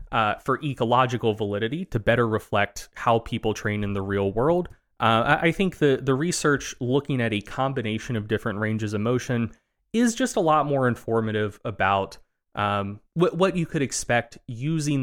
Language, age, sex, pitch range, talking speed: English, 30-49, male, 105-140 Hz, 170 wpm